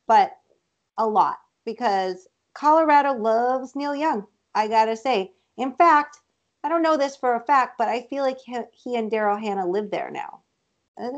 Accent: American